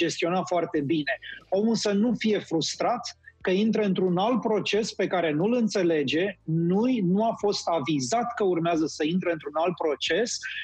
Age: 30-49